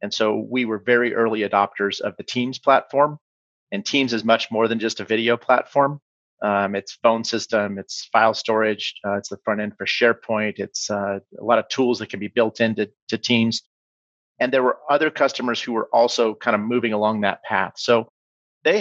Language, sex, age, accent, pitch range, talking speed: English, male, 40-59, American, 105-120 Hz, 205 wpm